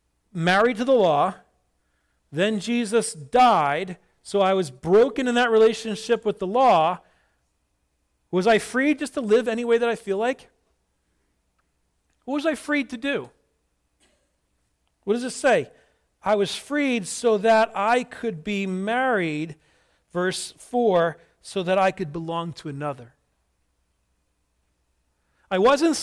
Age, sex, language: 40-59, male, English